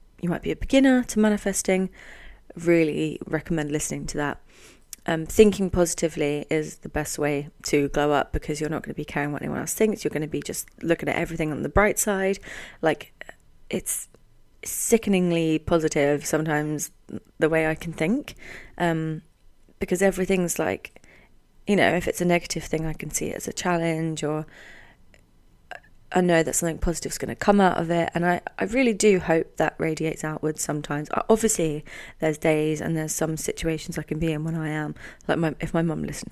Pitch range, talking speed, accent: 150-180 Hz, 190 wpm, British